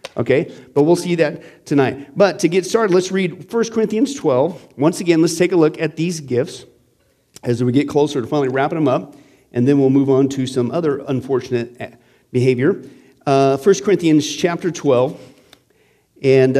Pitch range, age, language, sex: 130-170 Hz, 40-59, English, male